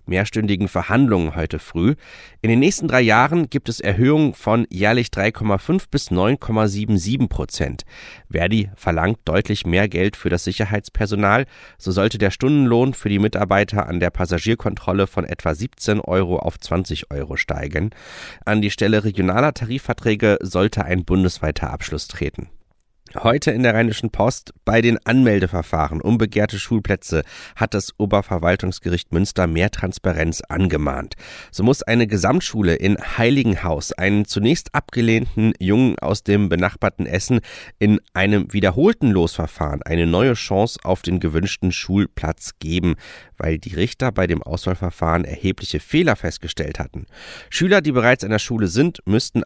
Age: 30-49